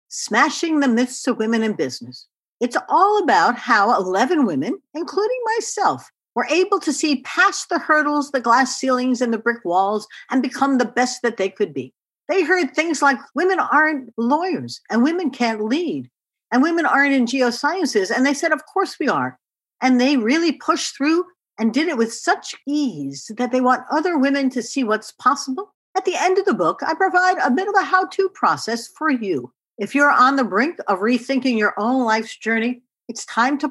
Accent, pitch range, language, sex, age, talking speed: American, 230-330 Hz, English, female, 50-69, 195 wpm